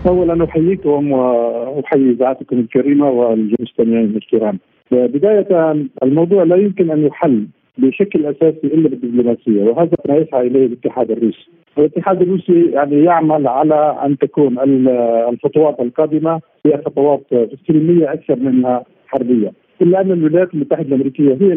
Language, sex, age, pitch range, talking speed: Arabic, male, 50-69, 130-165 Hz, 125 wpm